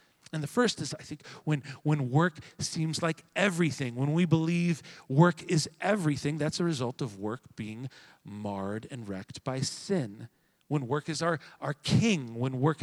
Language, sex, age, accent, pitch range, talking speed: English, male, 40-59, American, 135-170 Hz, 175 wpm